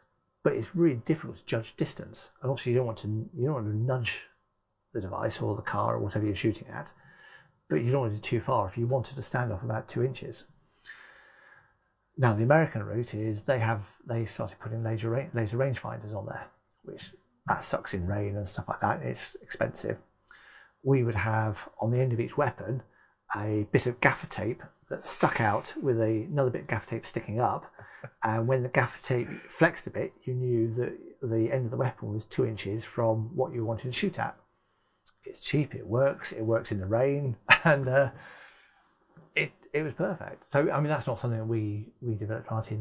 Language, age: English, 40-59